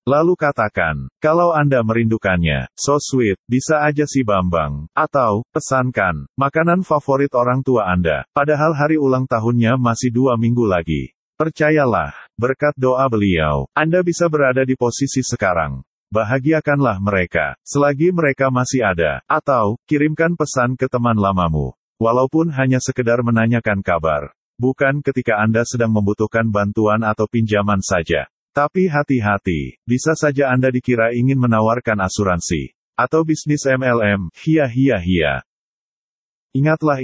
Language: Indonesian